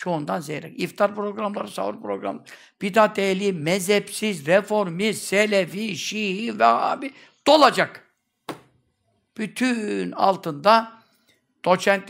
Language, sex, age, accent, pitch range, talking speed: Turkish, male, 60-79, native, 165-220 Hz, 85 wpm